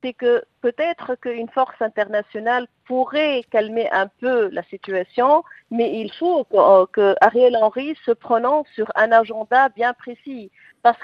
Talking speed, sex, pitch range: 145 wpm, female, 220-275 Hz